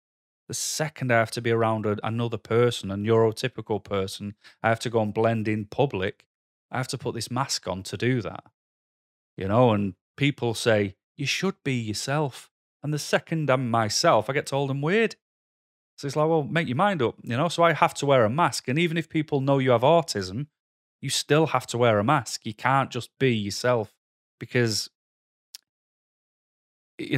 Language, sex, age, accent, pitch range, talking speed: English, male, 30-49, British, 110-135 Hz, 195 wpm